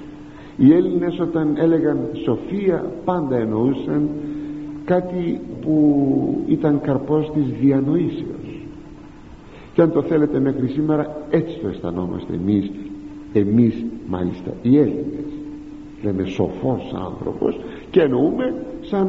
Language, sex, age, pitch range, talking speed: Greek, male, 50-69, 130-215 Hz, 105 wpm